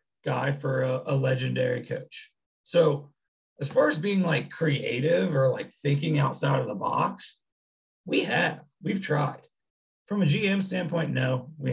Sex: male